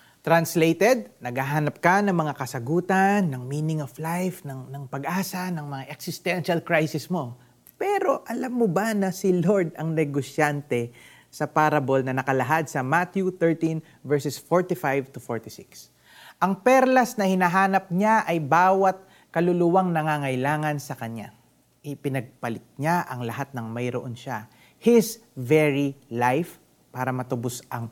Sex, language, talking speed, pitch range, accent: male, Filipino, 130 wpm, 125-175 Hz, native